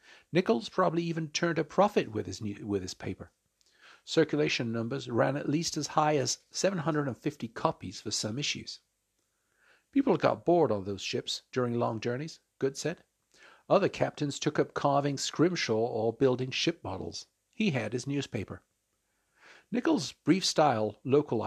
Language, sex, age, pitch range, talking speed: English, male, 50-69, 105-155 Hz, 150 wpm